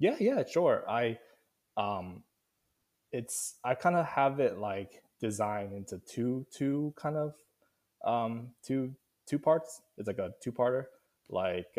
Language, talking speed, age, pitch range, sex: English, 145 wpm, 20-39, 95-130 Hz, male